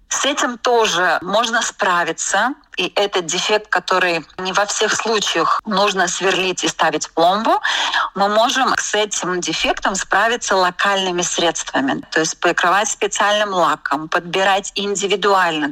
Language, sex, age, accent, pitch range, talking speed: Russian, female, 30-49, native, 170-215 Hz, 130 wpm